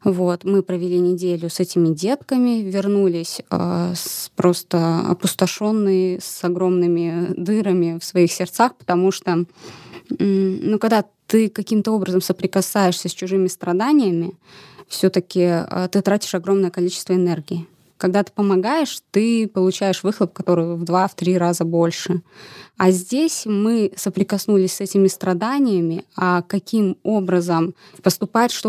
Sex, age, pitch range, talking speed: female, 20-39, 180-205 Hz, 130 wpm